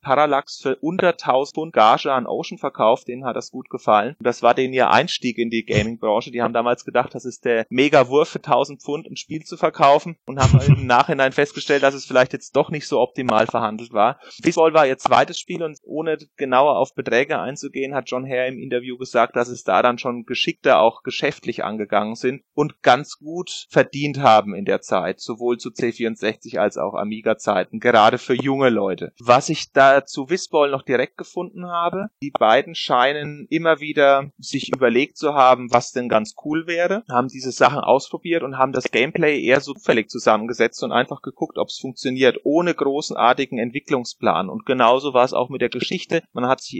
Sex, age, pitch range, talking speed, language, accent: male, 30-49, 125-150 Hz, 195 wpm, German, German